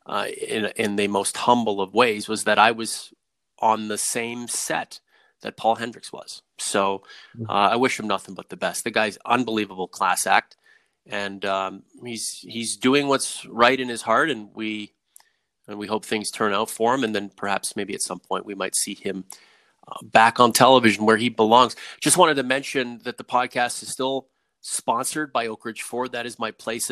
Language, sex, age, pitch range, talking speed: English, male, 30-49, 105-120 Hz, 200 wpm